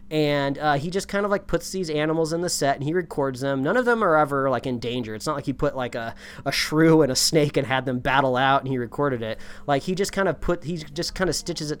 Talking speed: 295 wpm